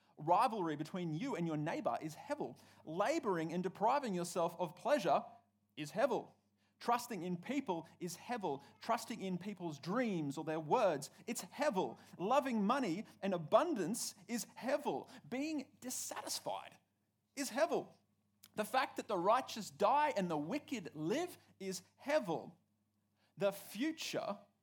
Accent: Australian